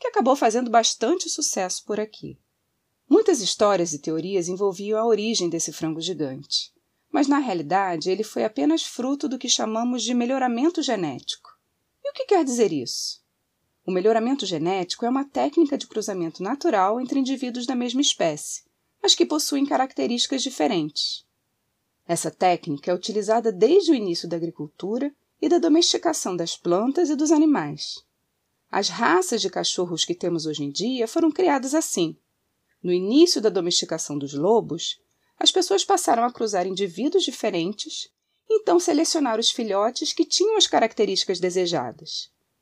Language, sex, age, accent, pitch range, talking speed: Portuguese, female, 30-49, Brazilian, 175-295 Hz, 150 wpm